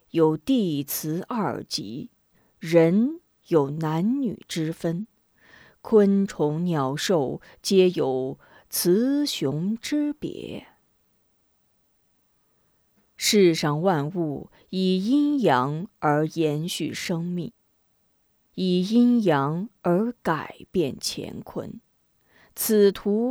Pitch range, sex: 160-235 Hz, female